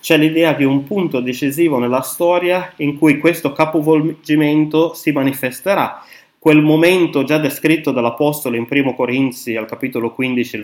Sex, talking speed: male, 140 wpm